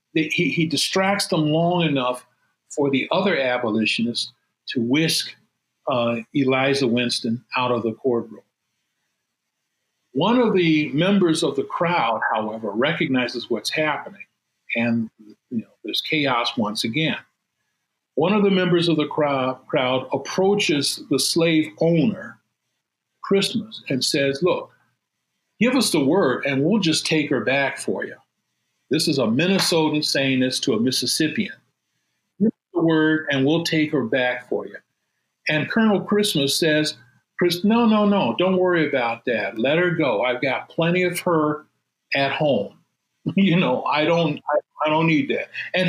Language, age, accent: English, 50-69, American